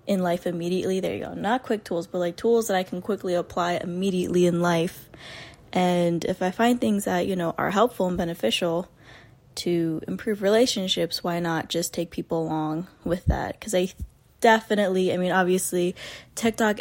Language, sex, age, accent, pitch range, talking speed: English, female, 20-39, American, 175-215 Hz, 180 wpm